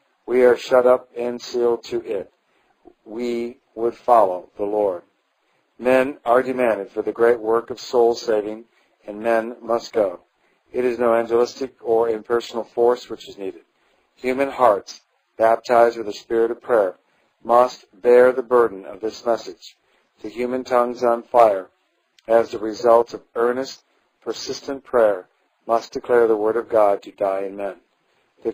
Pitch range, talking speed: 110-125 Hz, 155 wpm